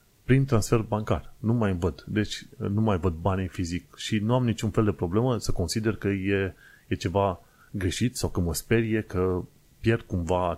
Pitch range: 90-115 Hz